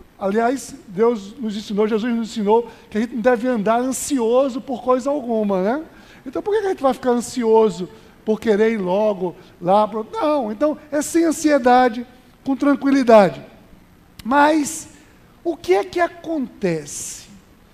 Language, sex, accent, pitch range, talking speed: Portuguese, male, Brazilian, 215-280 Hz, 150 wpm